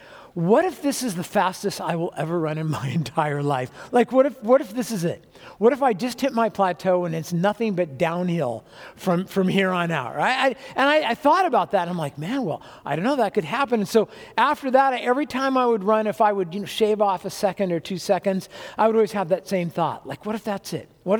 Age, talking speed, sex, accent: 50-69, 255 wpm, male, American